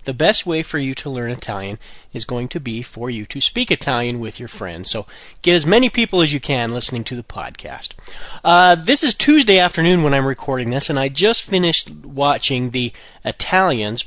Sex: male